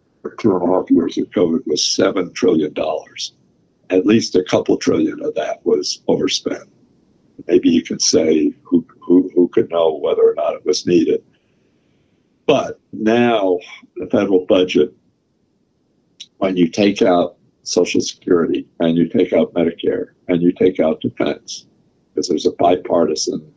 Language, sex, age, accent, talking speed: English, male, 60-79, American, 150 wpm